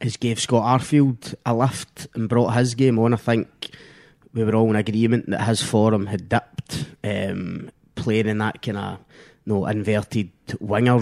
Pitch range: 110-130 Hz